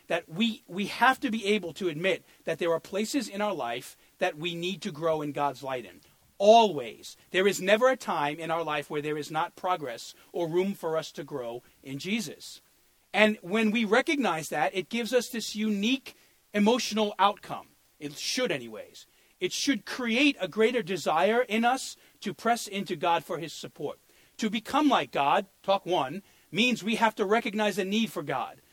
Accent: American